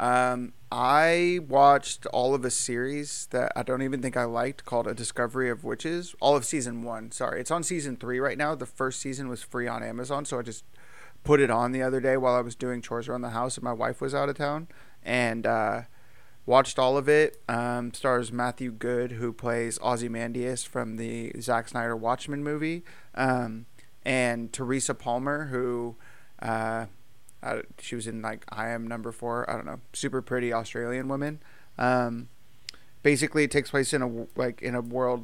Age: 30-49